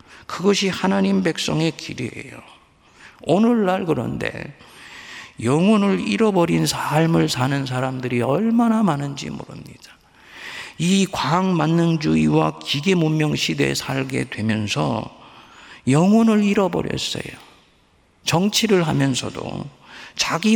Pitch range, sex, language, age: 120-195 Hz, male, Korean, 50-69